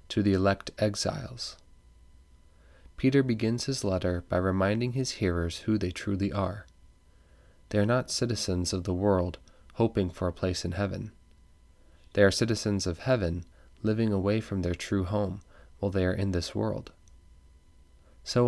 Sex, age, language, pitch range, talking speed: male, 20-39, English, 85-105 Hz, 155 wpm